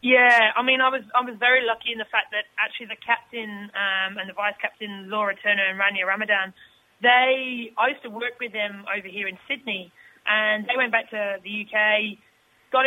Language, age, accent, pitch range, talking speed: English, 20-39, British, 205-240 Hz, 210 wpm